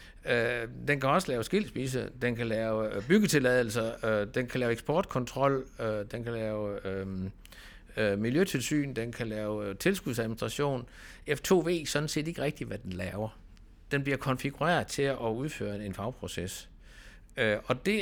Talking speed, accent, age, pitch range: 135 wpm, native, 60-79, 100-135 Hz